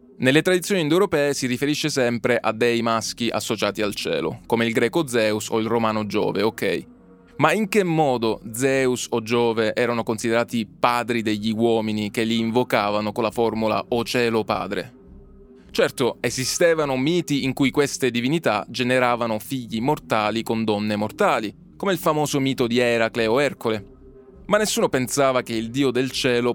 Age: 20-39